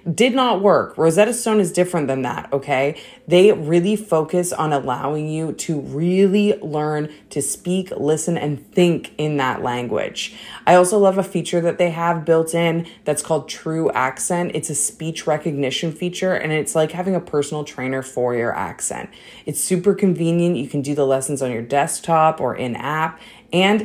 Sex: female